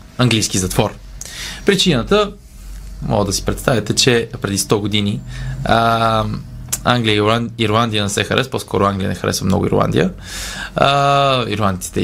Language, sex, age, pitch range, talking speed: Bulgarian, male, 20-39, 105-135 Hz, 125 wpm